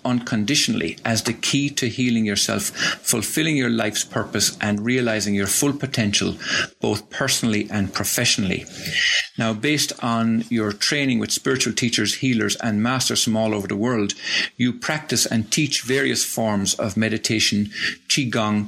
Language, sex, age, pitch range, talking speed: English, male, 50-69, 105-125 Hz, 145 wpm